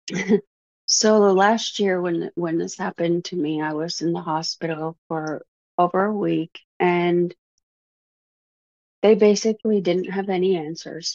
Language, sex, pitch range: English, female, 155-180 Hz